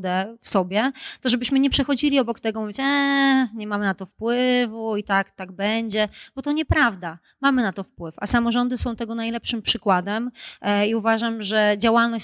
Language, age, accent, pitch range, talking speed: Polish, 30-49, native, 205-240 Hz, 175 wpm